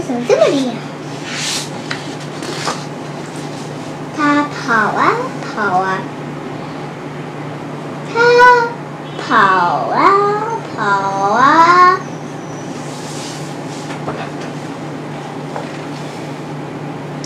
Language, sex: Chinese, male